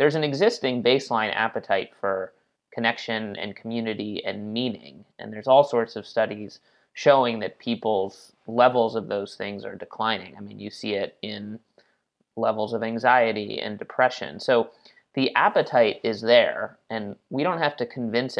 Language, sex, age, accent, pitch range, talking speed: English, male, 30-49, American, 110-125 Hz, 155 wpm